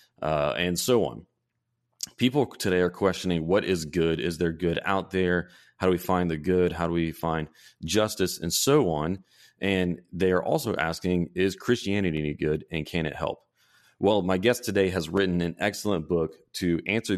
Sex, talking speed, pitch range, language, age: male, 190 wpm, 80-95 Hz, English, 30-49